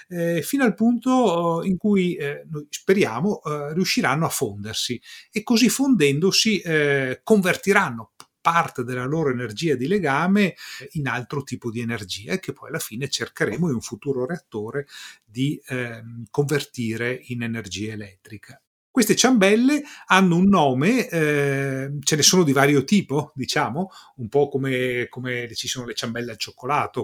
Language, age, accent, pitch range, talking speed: Italian, 30-49, native, 125-185 Hz, 145 wpm